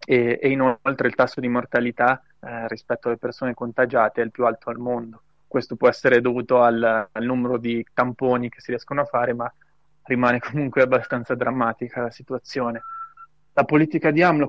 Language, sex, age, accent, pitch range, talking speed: Italian, male, 20-39, native, 120-140 Hz, 180 wpm